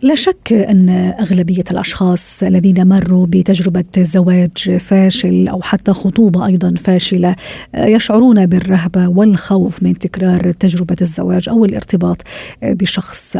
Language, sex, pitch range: Arabic, female, 180-200 Hz